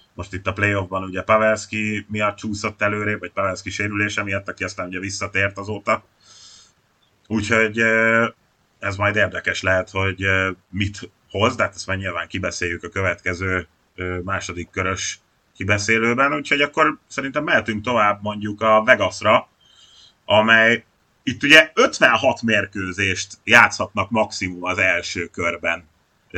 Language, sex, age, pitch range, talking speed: Hungarian, male, 30-49, 95-110 Hz, 125 wpm